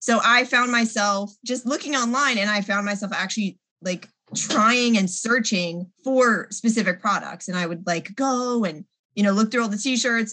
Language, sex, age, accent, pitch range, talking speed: English, female, 20-39, American, 185-225 Hz, 185 wpm